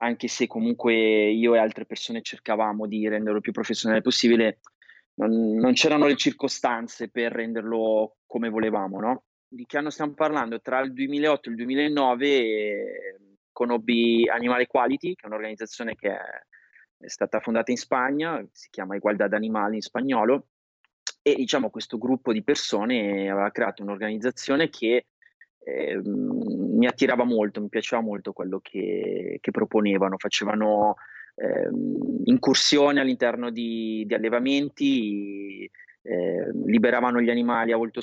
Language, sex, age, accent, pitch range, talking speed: Italian, male, 20-39, native, 110-145 Hz, 135 wpm